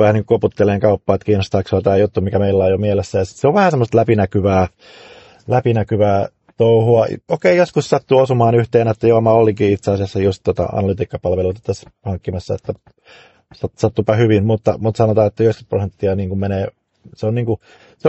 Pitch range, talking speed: 95-115 Hz, 185 wpm